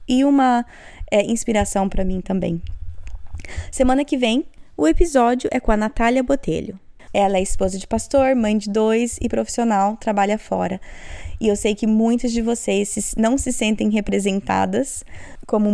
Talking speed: 155 wpm